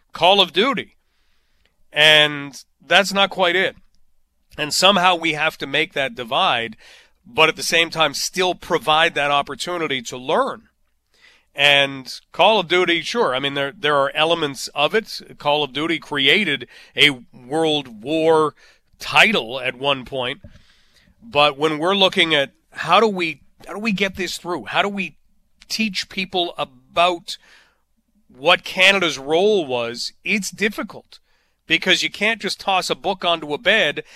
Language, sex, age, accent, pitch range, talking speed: English, male, 40-59, American, 150-190 Hz, 155 wpm